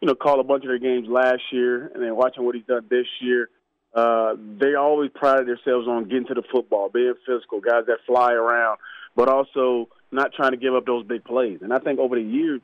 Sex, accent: male, American